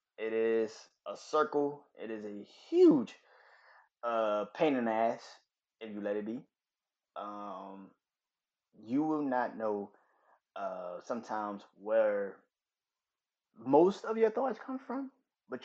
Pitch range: 100-125 Hz